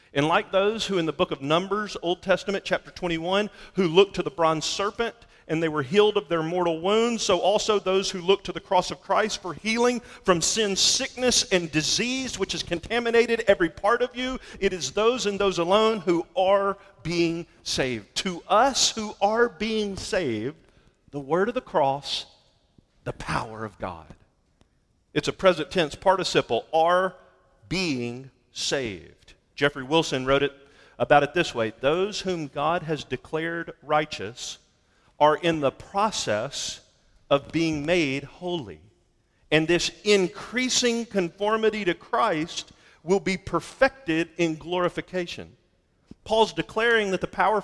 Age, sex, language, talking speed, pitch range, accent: 40-59, male, English, 155 wpm, 155-205 Hz, American